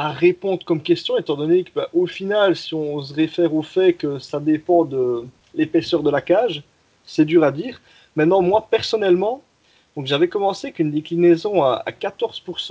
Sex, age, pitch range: male, 30-49, 150-185 Hz